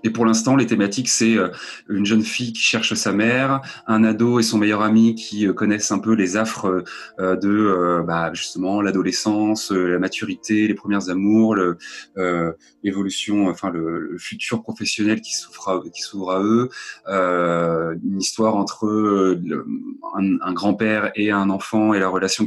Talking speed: 170 wpm